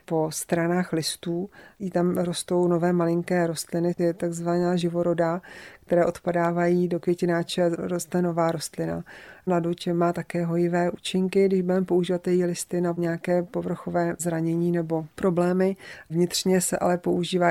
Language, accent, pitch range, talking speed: Czech, native, 170-180 Hz, 130 wpm